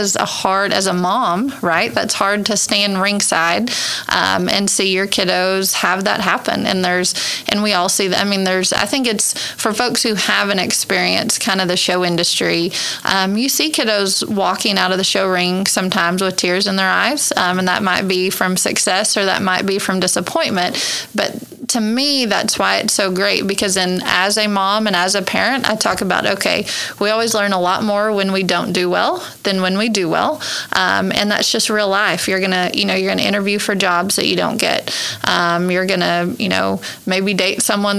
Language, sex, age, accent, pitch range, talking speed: English, female, 20-39, American, 185-220 Hz, 215 wpm